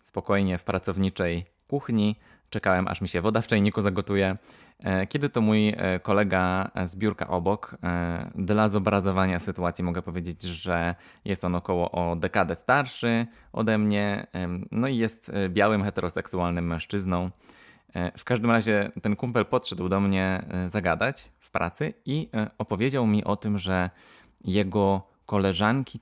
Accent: native